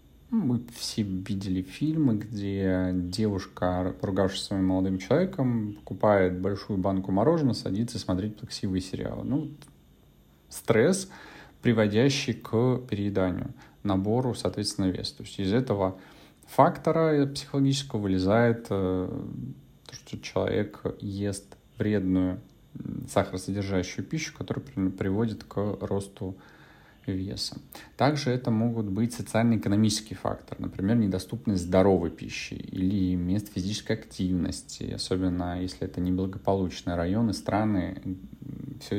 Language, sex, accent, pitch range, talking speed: Russian, male, native, 95-115 Hz, 100 wpm